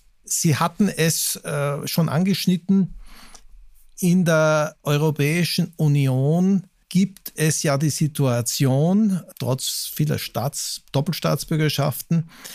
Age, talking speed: 50-69, 90 wpm